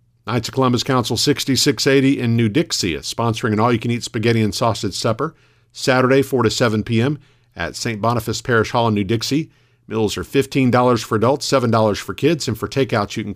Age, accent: 50-69, American